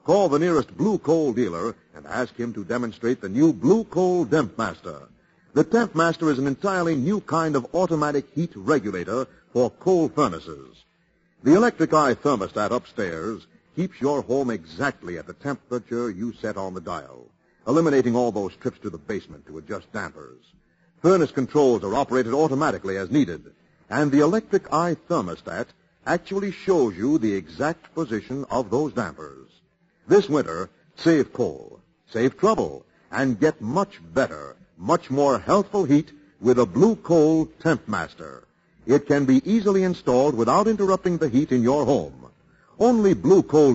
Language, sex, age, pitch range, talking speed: English, male, 50-69, 120-175 Hz, 160 wpm